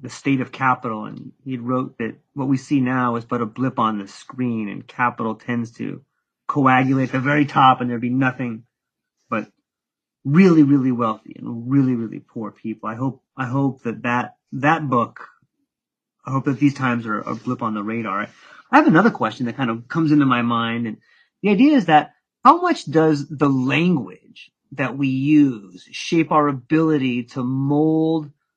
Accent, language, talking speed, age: American, English, 185 wpm, 30-49